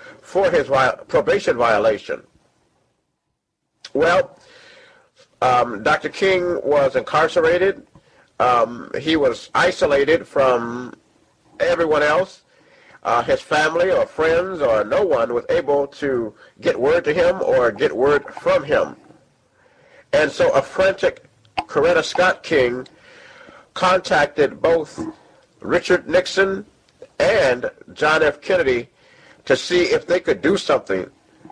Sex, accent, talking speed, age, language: male, American, 110 wpm, 50-69, English